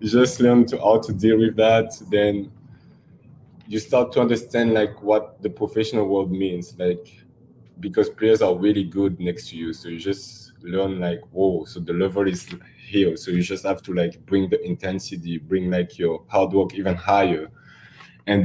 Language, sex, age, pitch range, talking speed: English, male, 20-39, 95-110 Hz, 180 wpm